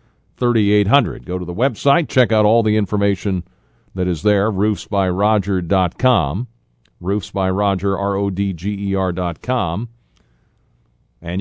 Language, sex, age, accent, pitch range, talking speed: English, male, 50-69, American, 90-110 Hz, 140 wpm